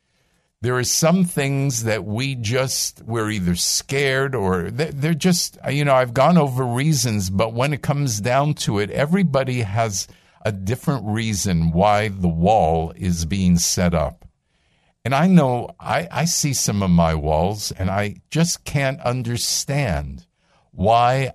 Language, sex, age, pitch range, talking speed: English, male, 50-69, 90-135 Hz, 150 wpm